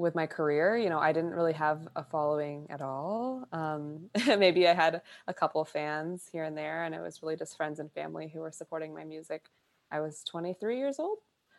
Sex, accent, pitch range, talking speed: female, American, 155-180 Hz, 215 wpm